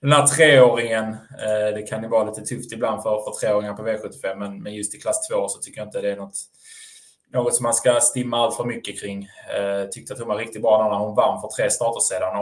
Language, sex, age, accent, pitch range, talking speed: Swedish, male, 20-39, Norwegian, 105-130 Hz, 240 wpm